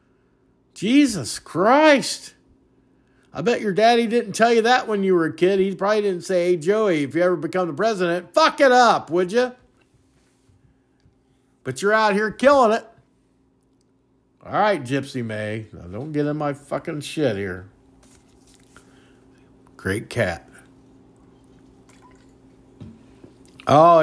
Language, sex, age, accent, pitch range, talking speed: English, male, 50-69, American, 130-210 Hz, 130 wpm